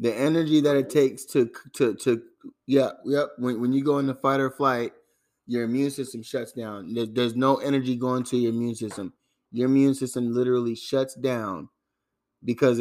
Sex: male